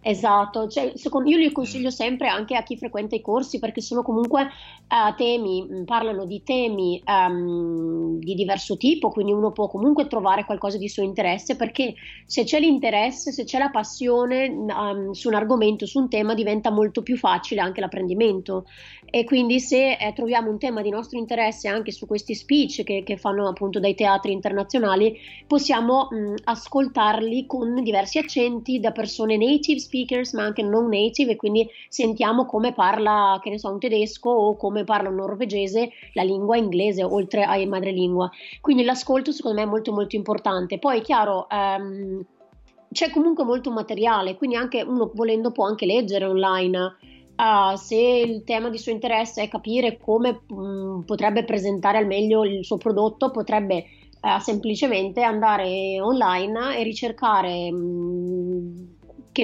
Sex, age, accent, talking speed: female, 30-49, native, 160 wpm